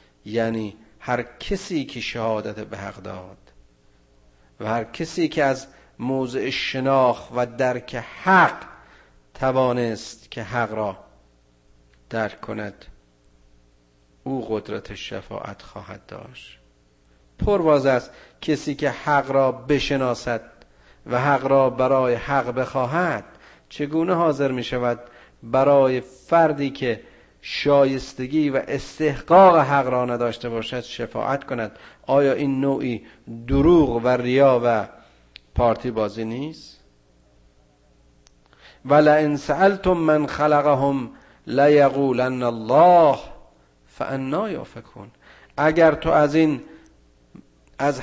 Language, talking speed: Persian, 100 wpm